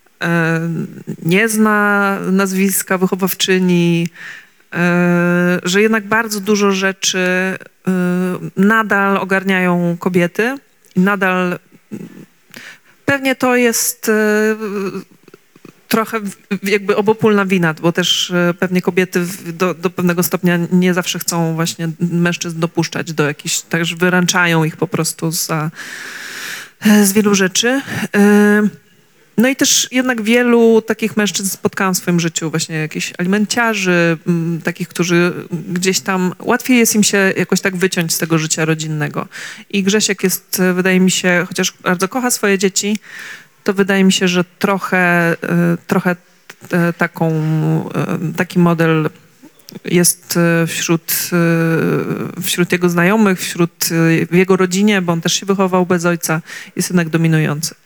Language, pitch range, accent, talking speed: Polish, 170-200 Hz, native, 115 wpm